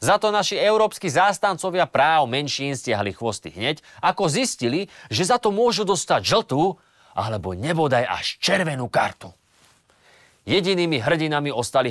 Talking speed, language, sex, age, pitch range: 125 wpm, Slovak, male, 30-49, 135-215 Hz